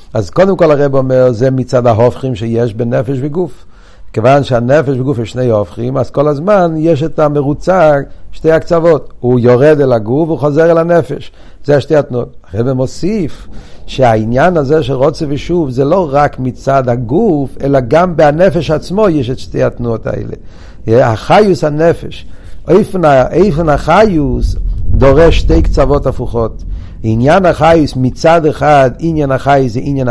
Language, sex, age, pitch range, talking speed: Hebrew, male, 50-69, 115-150 Hz, 145 wpm